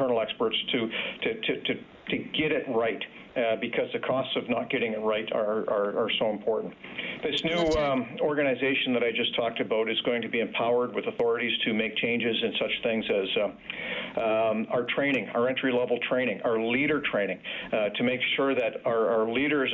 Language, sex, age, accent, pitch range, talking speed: English, male, 50-69, American, 115-140 Hz, 195 wpm